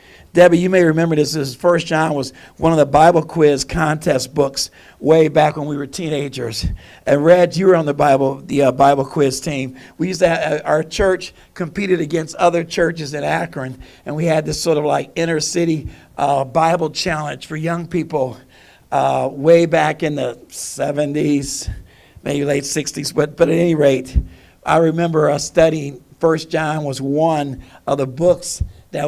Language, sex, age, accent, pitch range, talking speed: English, male, 50-69, American, 140-170 Hz, 185 wpm